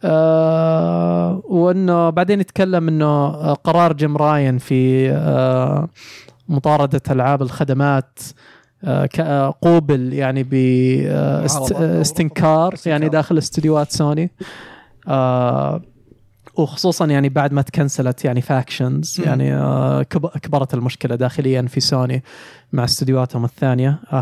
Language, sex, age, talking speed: Arabic, male, 20-39, 105 wpm